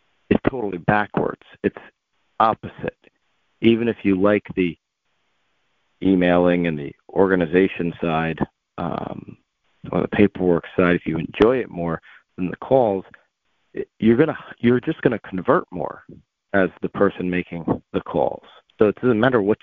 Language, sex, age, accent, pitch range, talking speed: English, male, 40-59, American, 90-115 Hz, 145 wpm